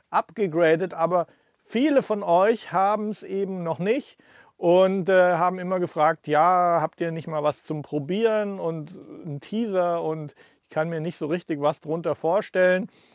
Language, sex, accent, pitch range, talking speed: German, male, German, 165-200 Hz, 165 wpm